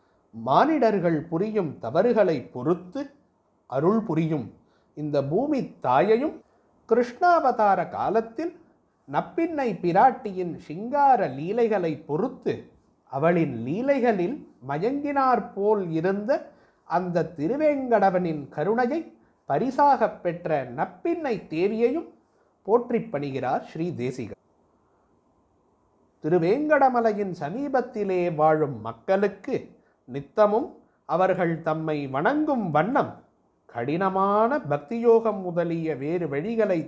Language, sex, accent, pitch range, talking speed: Tamil, male, native, 160-235 Hz, 70 wpm